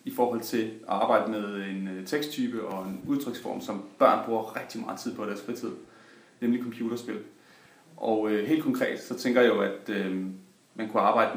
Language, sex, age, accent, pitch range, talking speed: Danish, male, 30-49, native, 100-125 Hz, 190 wpm